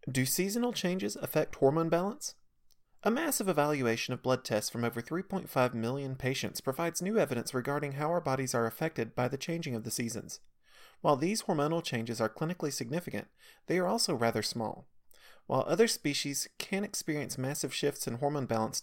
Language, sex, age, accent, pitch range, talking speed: English, male, 30-49, American, 120-180 Hz, 170 wpm